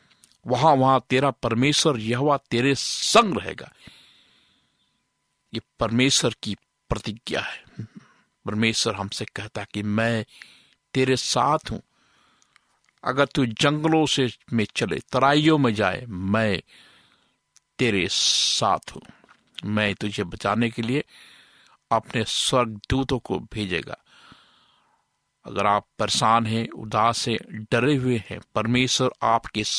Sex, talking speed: male, 110 wpm